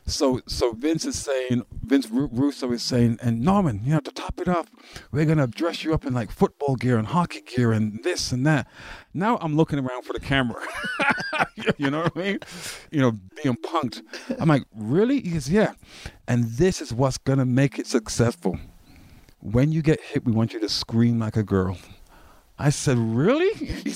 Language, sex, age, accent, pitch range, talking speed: English, male, 50-69, American, 110-155 Hz, 195 wpm